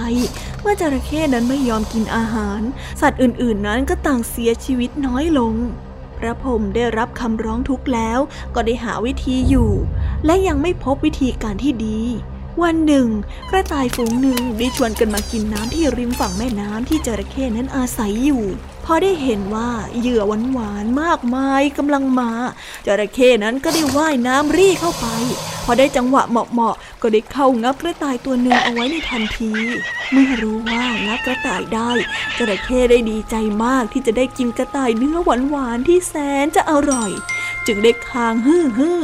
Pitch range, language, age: 230-275 Hz, Thai, 20-39